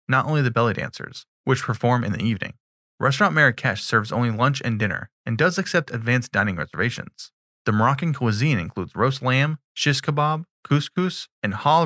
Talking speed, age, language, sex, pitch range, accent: 170 wpm, 20-39, English, male, 115-150 Hz, American